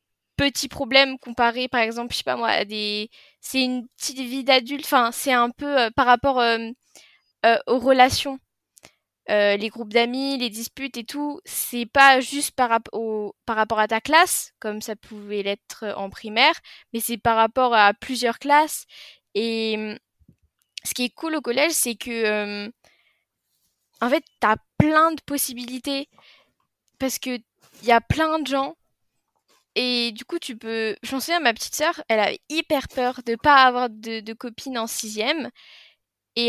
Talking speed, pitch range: 180 wpm, 225-275 Hz